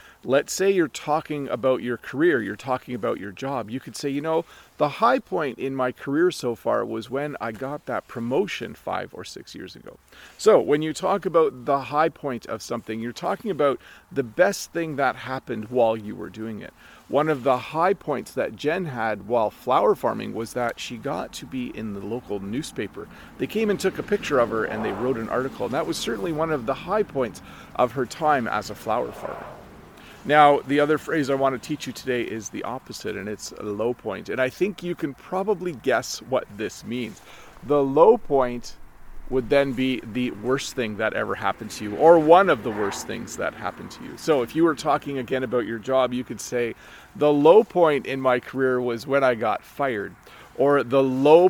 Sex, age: male, 40-59